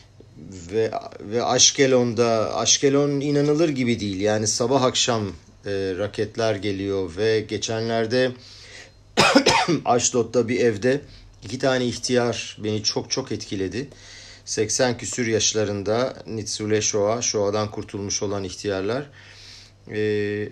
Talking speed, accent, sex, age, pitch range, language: 100 wpm, native, male, 50-69, 100-125 Hz, Turkish